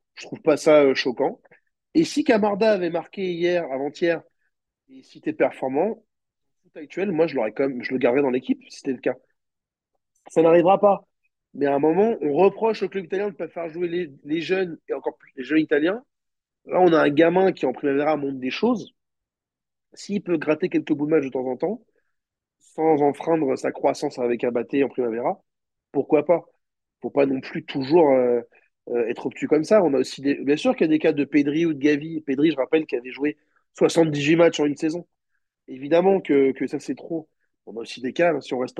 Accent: French